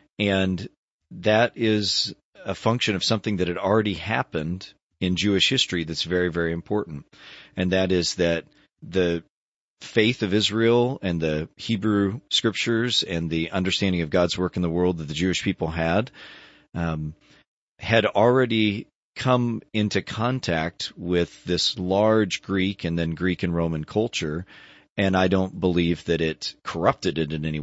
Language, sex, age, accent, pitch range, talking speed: English, male, 40-59, American, 85-105 Hz, 150 wpm